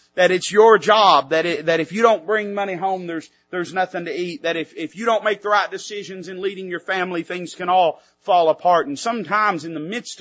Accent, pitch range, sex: American, 145-205 Hz, male